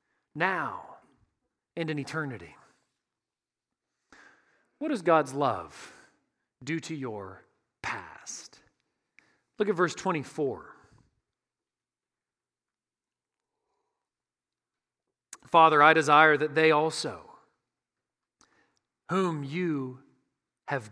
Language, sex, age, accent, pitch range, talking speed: English, male, 40-59, American, 140-200 Hz, 70 wpm